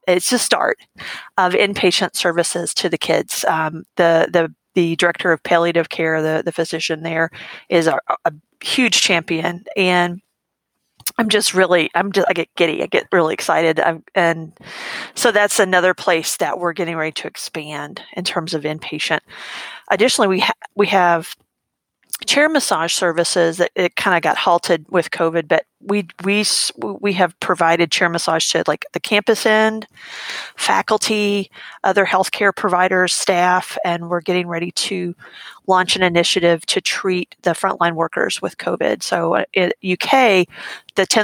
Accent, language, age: American, English, 40-59